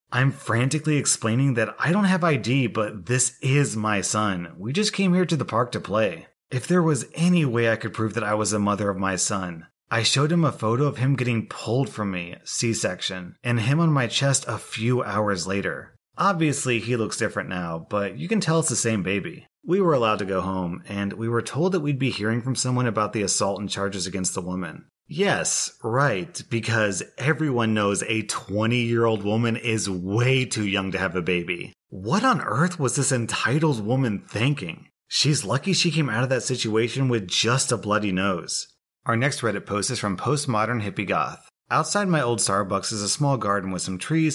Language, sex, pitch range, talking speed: English, male, 100-130 Hz, 205 wpm